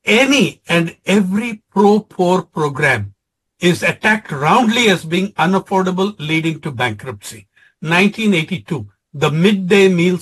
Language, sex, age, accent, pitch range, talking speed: English, male, 60-79, Indian, 155-205 Hz, 105 wpm